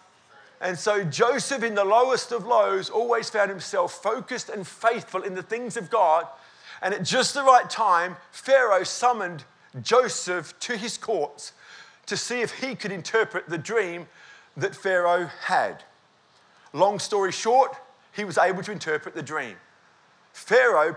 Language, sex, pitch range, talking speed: English, male, 180-230 Hz, 150 wpm